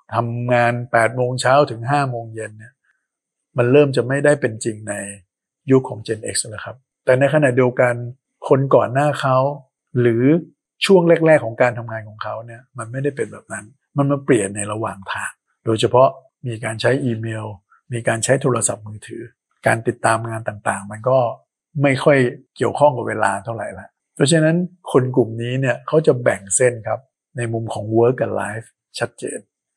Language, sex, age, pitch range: Thai, male, 60-79, 110-135 Hz